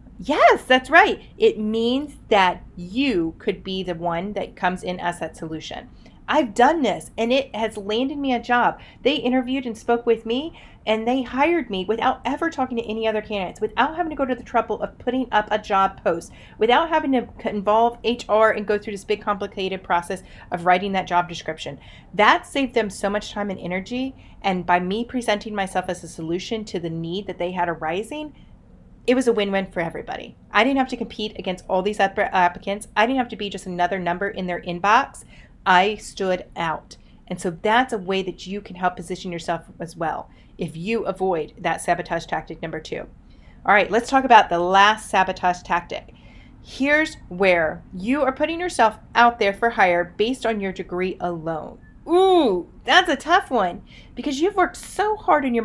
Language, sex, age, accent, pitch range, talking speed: English, female, 30-49, American, 185-250 Hz, 200 wpm